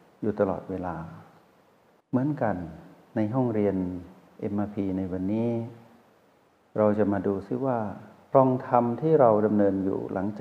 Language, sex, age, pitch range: Thai, male, 60-79, 95-115 Hz